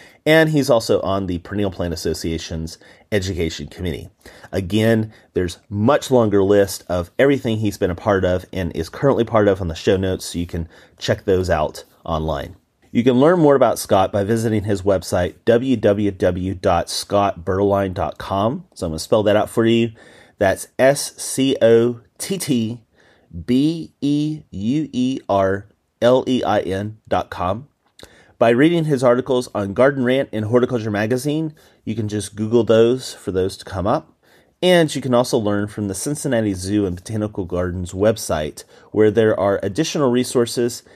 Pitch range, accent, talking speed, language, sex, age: 95-125 Hz, American, 145 wpm, English, male, 30-49